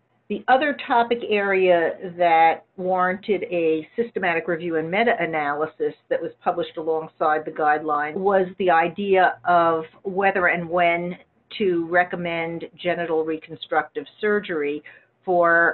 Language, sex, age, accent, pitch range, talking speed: English, female, 50-69, American, 155-190 Hz, 115 wpm